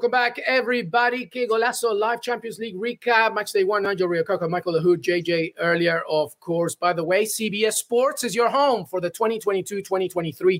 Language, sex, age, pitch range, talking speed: English, male, 30-49, 165-230 Hz, 175 wpm